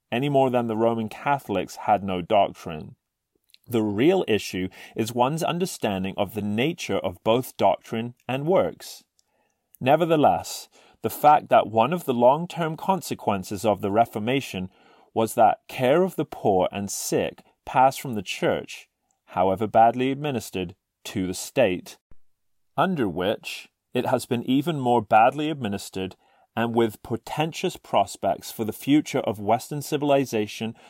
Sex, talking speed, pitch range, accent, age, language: male, 140 wpm, 105-135 Hz, British, 30-49, English